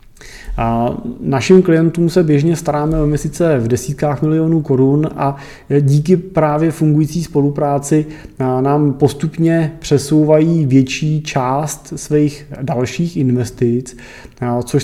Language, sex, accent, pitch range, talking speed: Czech, male, native, 125-145 Hz, 105 wpm